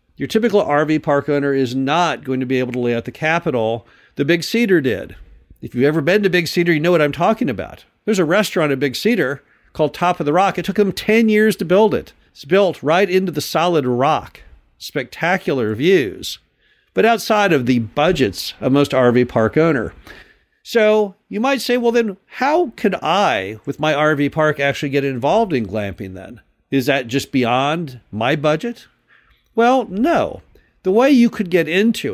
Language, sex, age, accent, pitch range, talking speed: English, male, 50-69, American, 135-185 Hz, 195 wpm